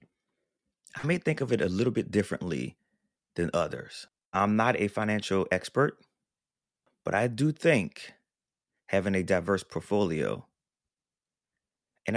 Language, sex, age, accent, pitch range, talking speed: English, male, 30-49, American, 90-120 Hz, 125 wpm